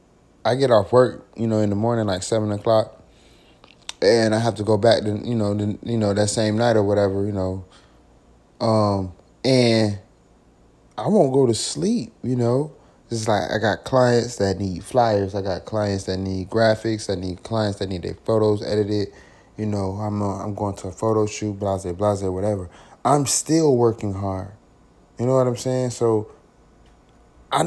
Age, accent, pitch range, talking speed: 20-39, American, 95-120 Hz, 185 wpm